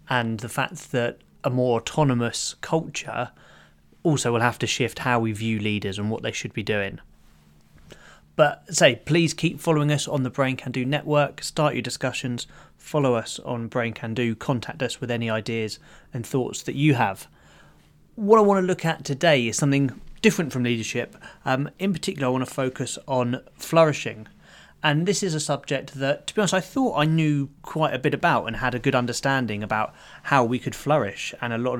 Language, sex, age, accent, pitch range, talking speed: English, male, 20-39, British, 115-150 Hz, 200 wpm